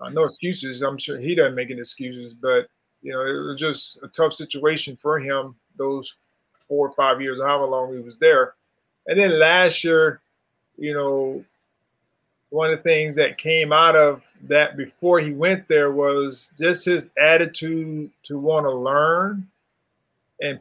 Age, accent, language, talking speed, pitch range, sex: 30-49, American, English, 170 wpm, 145-175 Hz, male